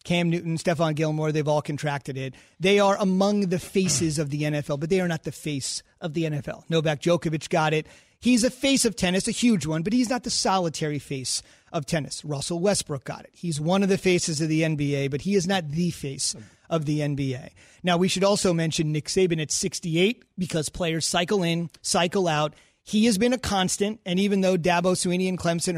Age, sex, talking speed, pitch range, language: 30-49, male, 215 wpm, 160-195 Hz, English